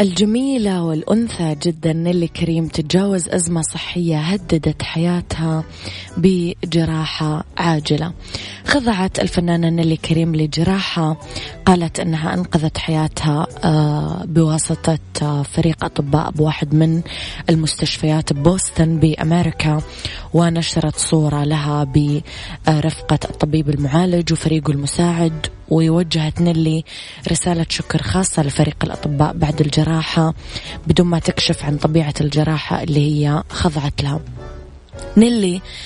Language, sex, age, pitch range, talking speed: Arabic, female, 20-39, 150-170 Hz, 95 wpm